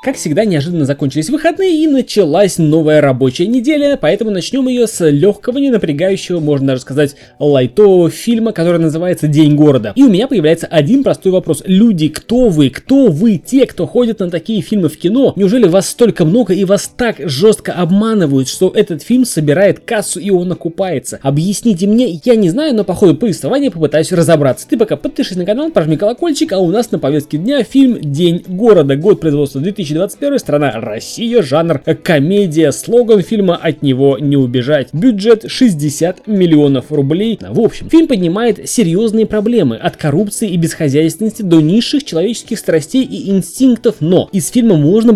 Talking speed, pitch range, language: 170 wpm, 150-225 Hz, Russian